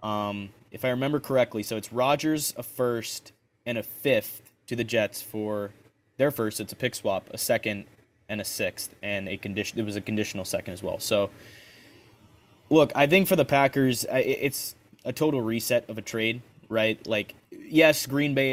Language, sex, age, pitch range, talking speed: English, male, 20-39, 105-125 Hz, 185 wpm